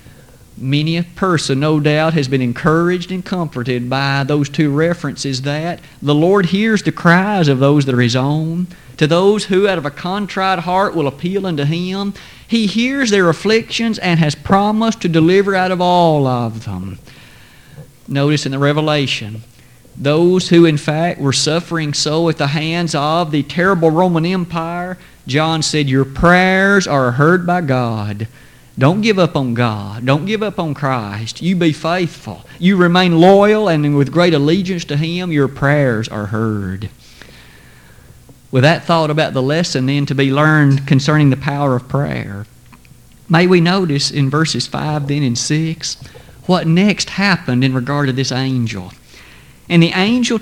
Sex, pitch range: male, 135-180 Hz